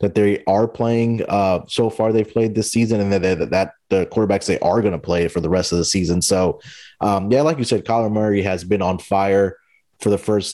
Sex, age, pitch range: male, 30-49, 90-105 Hz